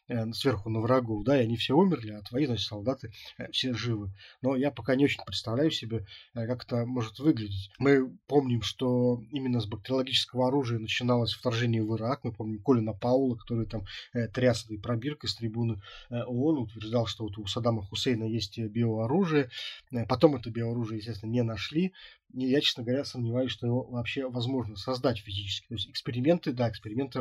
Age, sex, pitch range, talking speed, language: 20-39, male, 110-130 Hz, 170 wpm, Russian